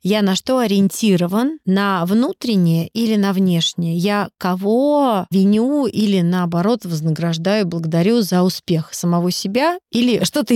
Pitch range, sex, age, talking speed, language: 175-210 Hz, female, 30-49, 125 wpm, Russian